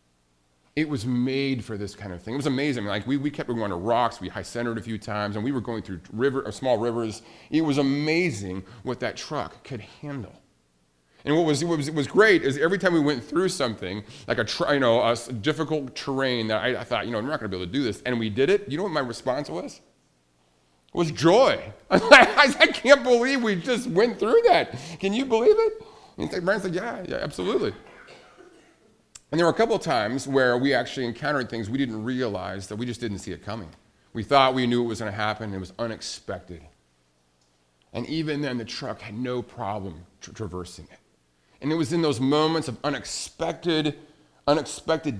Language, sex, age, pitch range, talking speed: English, male, 40-59, 100-155 Hz, 215 wpm